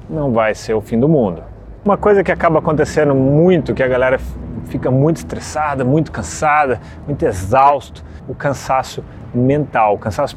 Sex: male